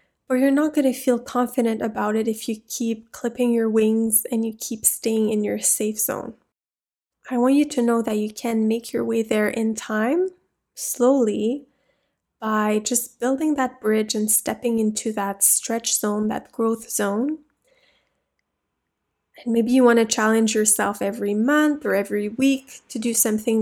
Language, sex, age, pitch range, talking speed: English, female, 20-39, 215-245 Hz, 170 wpm